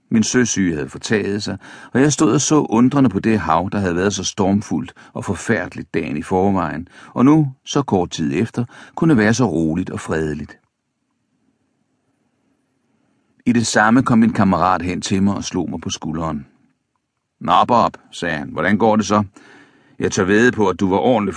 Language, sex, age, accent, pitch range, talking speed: Danish, male, 60-79, native, 90-115 Hz, 190 wpm